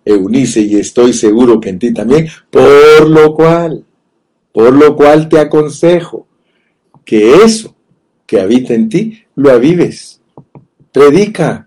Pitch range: 110-170 Hz